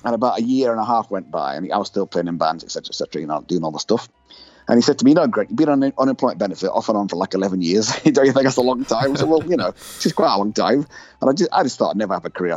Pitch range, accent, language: 90-115 Hz, British, English